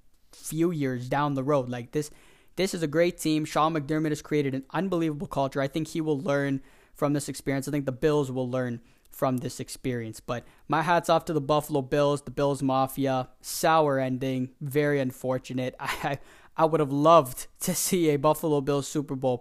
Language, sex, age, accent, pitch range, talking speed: English, male, 20-39, American, 135-165 Hz, 195 wpm